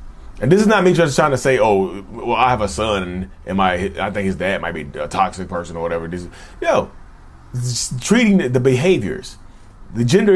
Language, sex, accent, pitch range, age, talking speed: English, male, American, 95-155 Hz, 30-49, 210 wpm